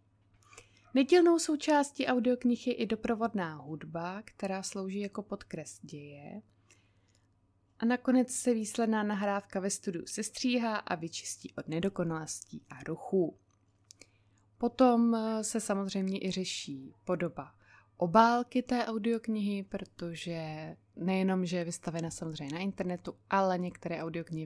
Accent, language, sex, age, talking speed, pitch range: native, Czech, female, 20-39, 115 wpm, 165-225 Hz